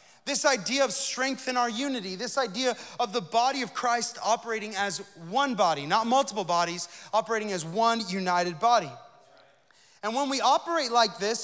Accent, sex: American, male